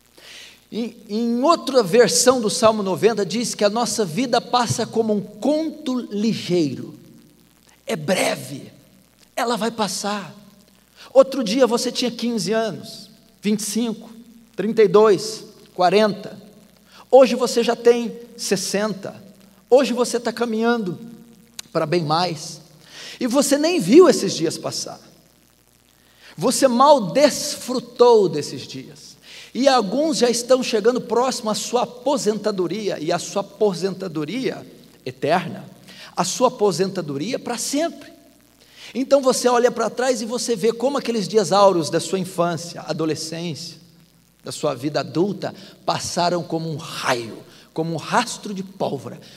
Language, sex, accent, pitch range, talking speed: Portuguese, male, Brazilian, 190-245 Hz, 125 wpm